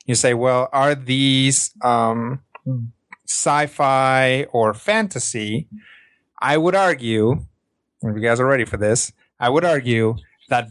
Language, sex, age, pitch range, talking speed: English, male, 30-49, 120-150 Hz, 130 wpm